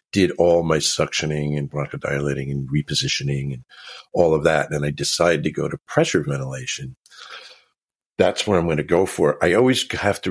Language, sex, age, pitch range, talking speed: English, male, 50-69, 70-85 Hz, 180 wpm